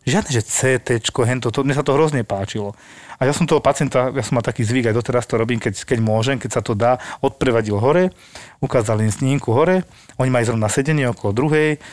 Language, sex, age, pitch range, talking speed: Slovak, male, 40-59, 120-150 Hz, 215 wpm